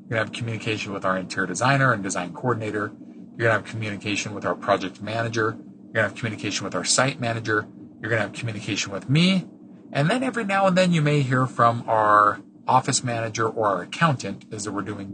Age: 40-59